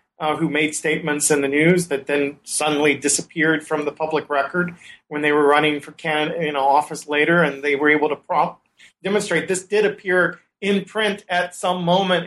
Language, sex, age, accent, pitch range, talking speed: English, male, 40-59, American, 150-180 Hz, 190 wpm